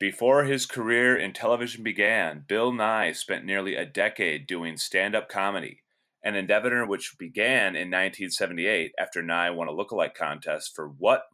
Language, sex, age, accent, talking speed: English, male, 30-49, American, 155 wpm